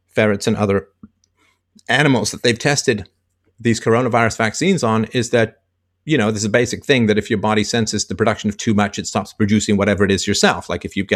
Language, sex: English, male